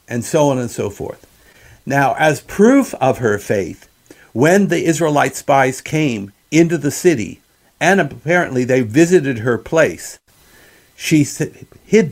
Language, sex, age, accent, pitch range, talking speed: English, male, 50-69, American, 120-160 Hz, 140 wpm